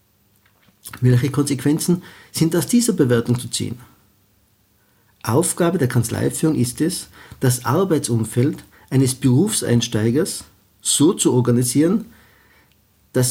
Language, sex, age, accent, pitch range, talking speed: German, male, 50-69, Austrian, 115-155 Hz, 95 wpm